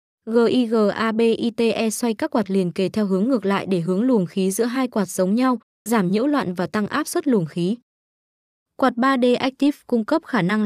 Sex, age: female, 20-39